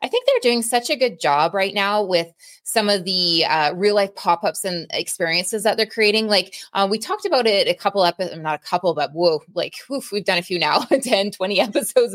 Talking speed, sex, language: 225 wpm, female, English